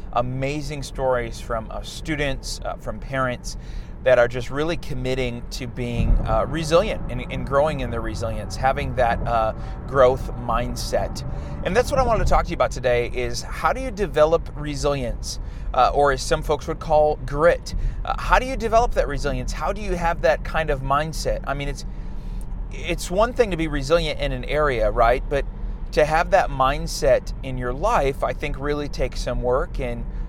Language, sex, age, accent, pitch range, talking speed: English, male, 30-49, American, 120-155 Hz, 190 wpm